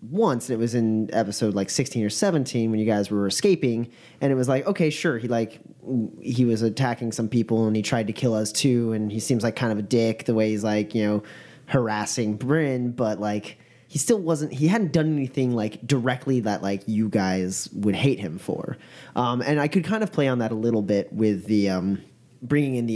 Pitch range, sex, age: 105-130 Hz, male, 30-49